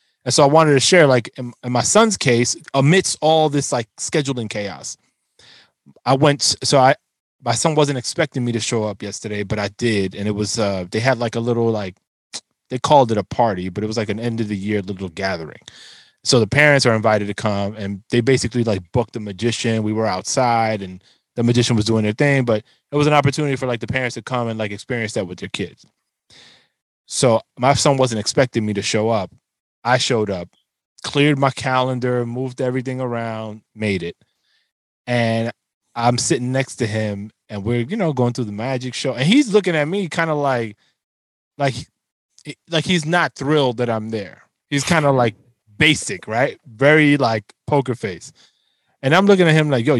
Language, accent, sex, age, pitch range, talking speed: English, American, male, 20-39, 110-145 Hz, 205 wpm